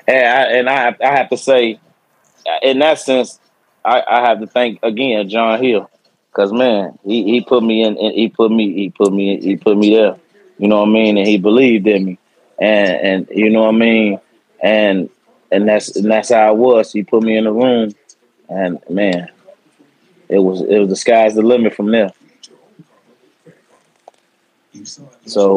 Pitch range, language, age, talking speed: 105-125 Hz, English, 20-39, 190 wpm